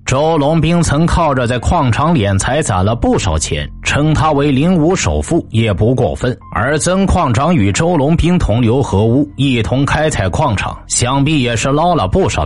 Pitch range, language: 100-150 Hz, Chinese